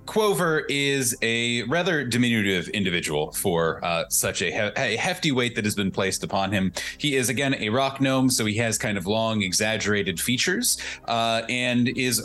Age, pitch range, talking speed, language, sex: 30-49, 100-130 Hz, 175 wpm, English, male